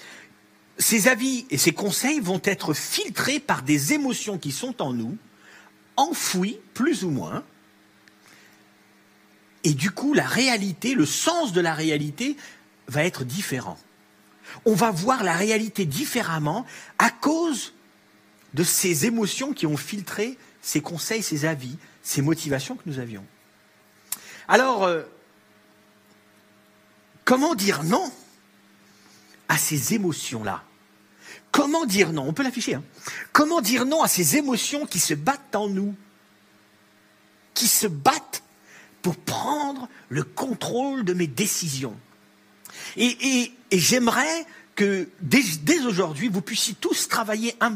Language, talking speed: French, 130 wpm